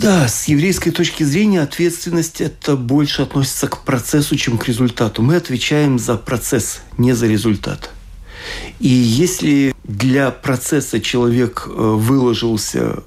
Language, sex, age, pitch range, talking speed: Russian, male, 40-59, 115-150 Hz, 125 wpm